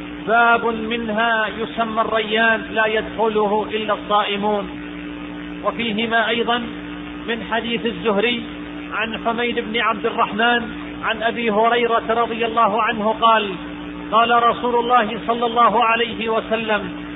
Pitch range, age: 215-240 Hz, 40-59